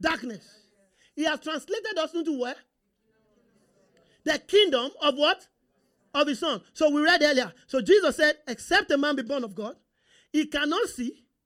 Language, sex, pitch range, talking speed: English, male, 275-350 Hz, 160 wpm